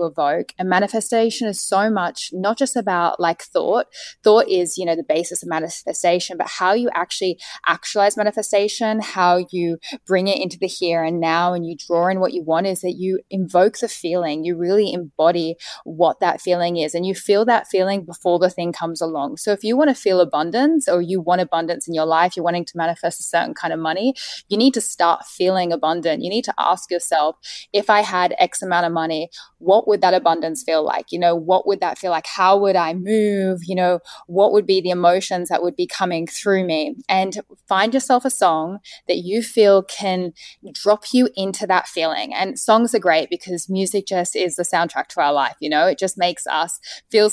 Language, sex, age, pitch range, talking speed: English, female, 10-29, 175-205 Hz, 215 wpm